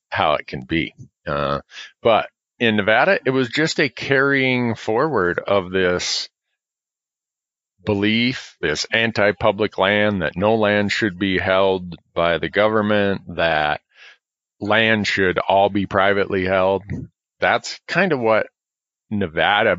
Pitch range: 95-110 Hz